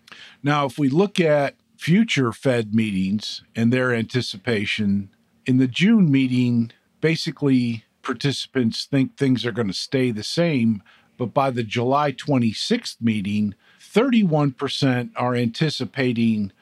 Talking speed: 125 wpm